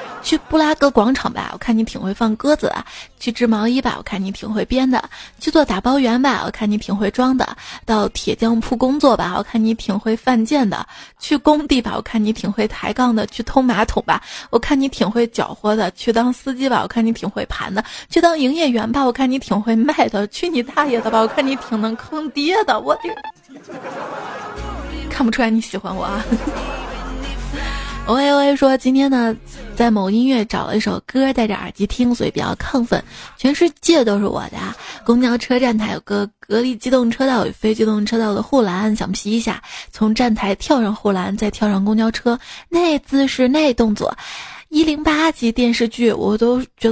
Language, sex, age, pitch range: Chinese, female, 20-39, 220-270 Hz